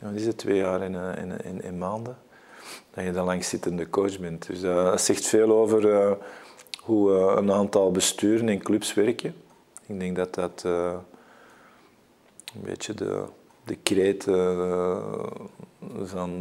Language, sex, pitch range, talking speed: Dutch, male, 90-100 Hz, 160 wpm